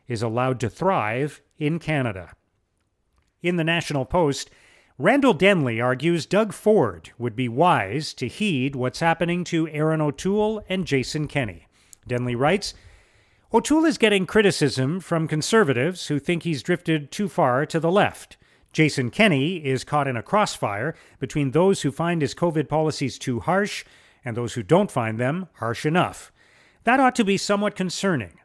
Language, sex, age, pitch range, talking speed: English, male, 40-59, 125-175 Hz, 160 wpm